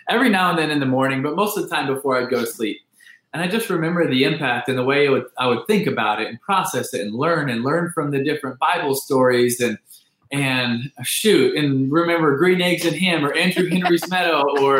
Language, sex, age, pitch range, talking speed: English, male, 20-39, 120-160 Hz, 240 wpm